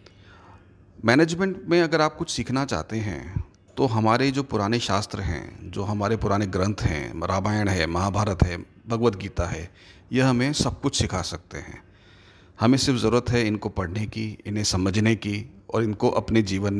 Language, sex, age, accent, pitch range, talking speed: Hindi, male, 40-59, native, 95-120 Hz, 170 wpm